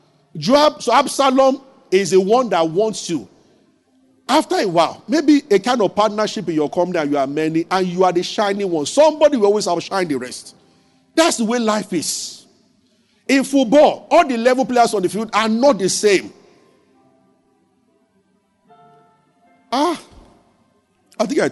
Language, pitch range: English, 165-220 Hz